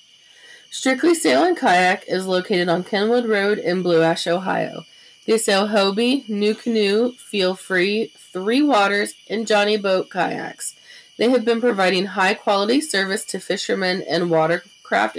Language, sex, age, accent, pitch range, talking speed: English, female, 20-39, American, 180-240 Hz, 140 wpm